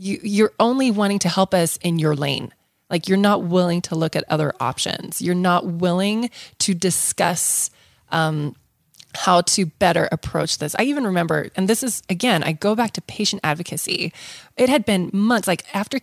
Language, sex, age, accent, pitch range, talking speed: English, female, 20-39, American, 170-230 Hz, 180 wpm